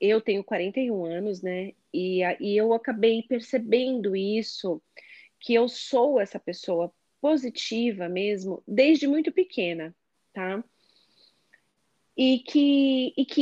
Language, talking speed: Portuguese, 115 wpm